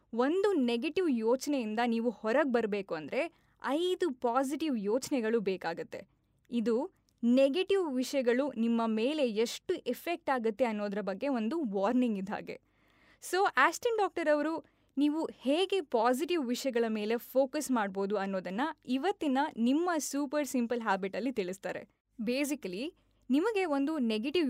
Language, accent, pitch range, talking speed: Kannada, native, 225-295 Hz, 115 wpm